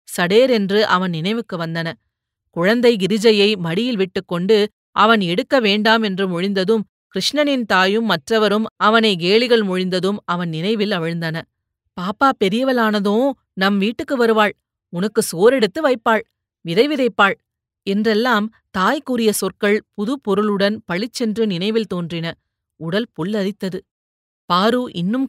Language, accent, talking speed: Tamil, native, 110 wpm